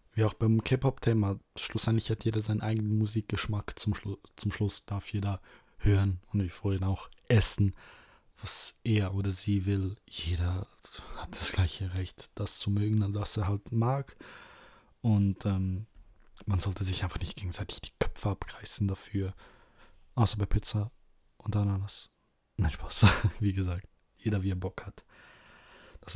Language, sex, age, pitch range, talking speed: German, male, 20-39, 95-110 Hz, 150 wpm